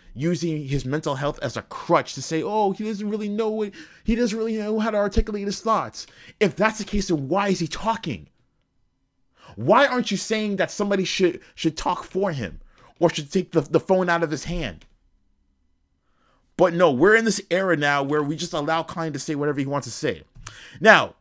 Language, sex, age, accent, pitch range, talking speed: English, male, 20-39, American, 120-180 Hz, 210 wpm